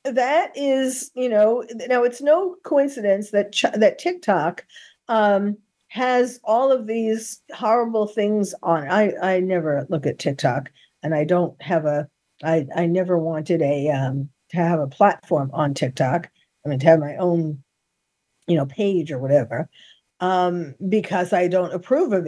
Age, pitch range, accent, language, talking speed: 50-69, 160-215 Hz, American, English, 160 wpm